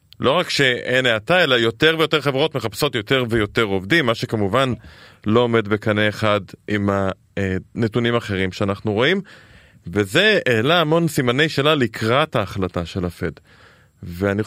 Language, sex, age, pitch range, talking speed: Hebrew, male, 20-39, 105-140 Hz, 135 wpm